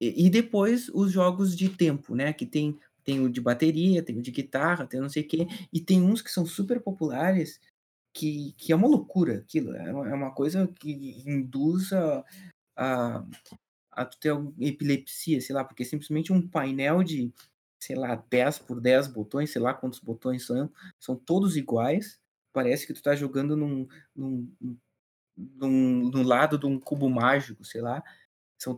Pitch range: 140-185 Hz